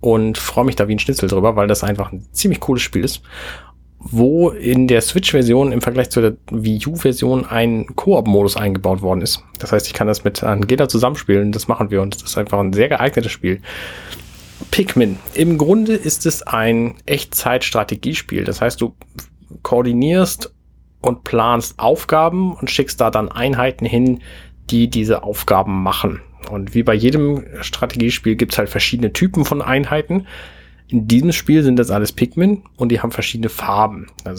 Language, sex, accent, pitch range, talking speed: German, male, German, 100-130 Hz, 175 wpm